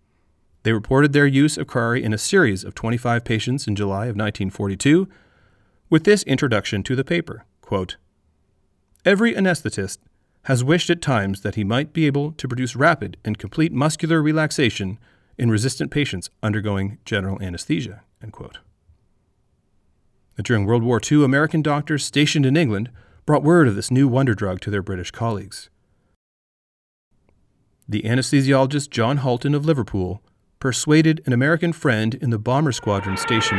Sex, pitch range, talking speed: male, 100-145 Hz, 150 wpm